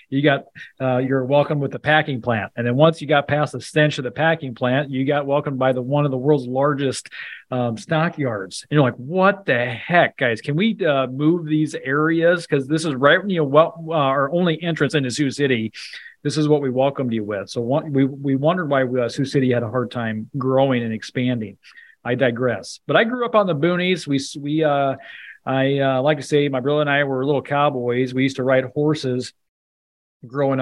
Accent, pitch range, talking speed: American, 130-150 Hz, 225 wpm